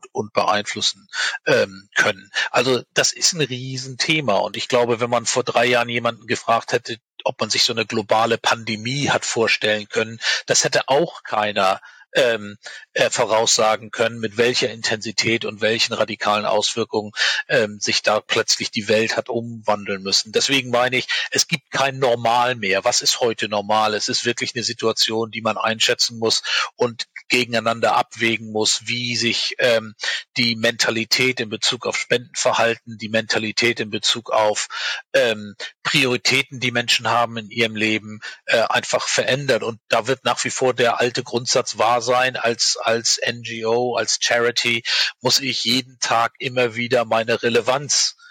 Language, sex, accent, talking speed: German, male, German, 160 wpm